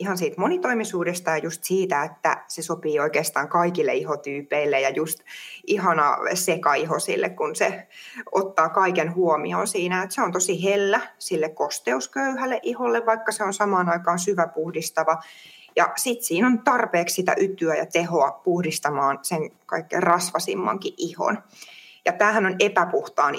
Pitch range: 160-215 Hz